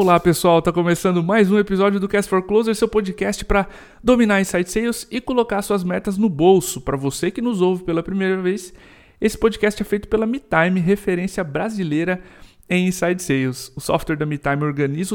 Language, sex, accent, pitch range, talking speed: Portuguese, male, Brazilian, 150-200 Hz, 185 wpm